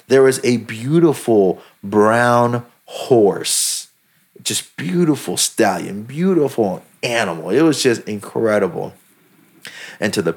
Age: 30-49